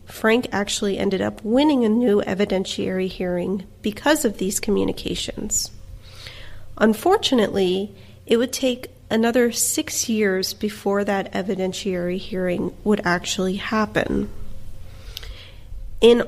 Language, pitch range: English, 180-225 Hz